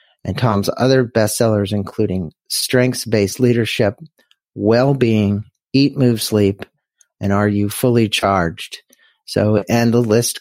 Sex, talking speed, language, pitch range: male, 120 wpm, English, 100-120 Hz